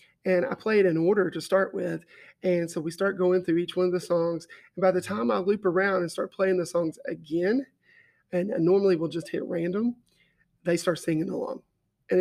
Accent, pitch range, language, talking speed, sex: American, 170-190 Hz, English, 215 wpm, male